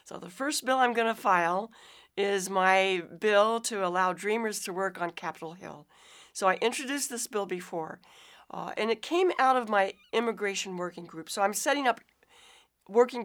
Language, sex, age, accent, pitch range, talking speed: English, female, 60-79, American, 185-235 Hz, 180 wpm